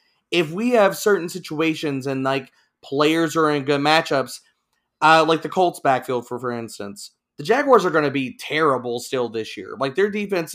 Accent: American